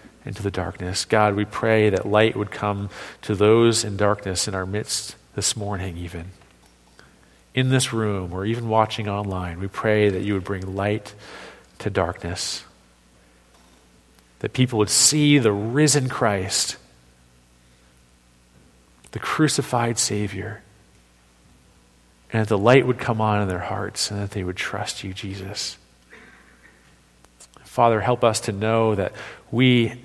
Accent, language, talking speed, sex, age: American, English, 140 wpm, male, 40-59